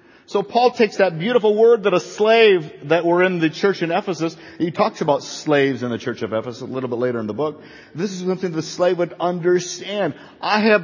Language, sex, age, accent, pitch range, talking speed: English, male, 50-69, American, 120-180 Hz, 225 wpm